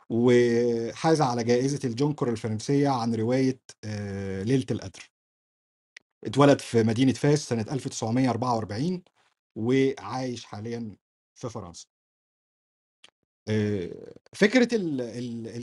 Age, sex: 50-69, male